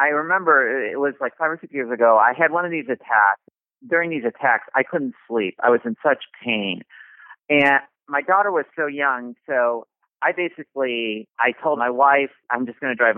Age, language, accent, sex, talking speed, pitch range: 40-59, English, American, male, 205 wpm, 110-145 Hz